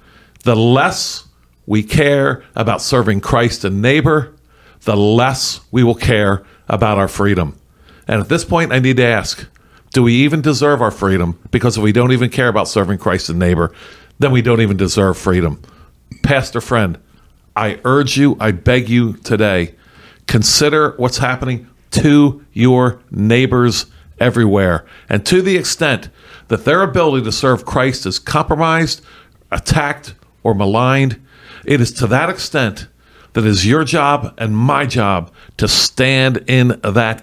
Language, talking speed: English, 155 wpm